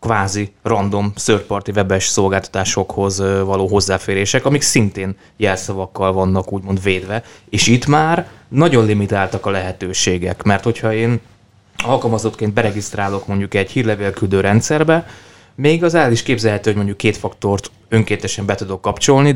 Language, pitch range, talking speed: Hungarian, 95-115 Hz, 130 wpm